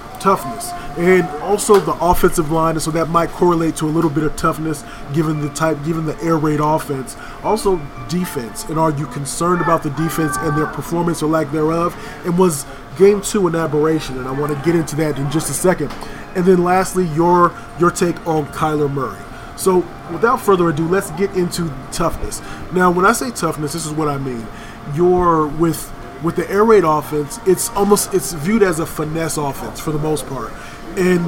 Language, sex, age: English, male, 20-39